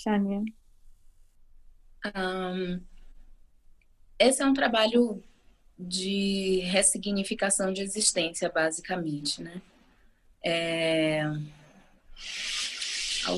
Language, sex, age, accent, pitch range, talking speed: English, female, 20-39, Brazilian, 175-205 Hz, 60 wpm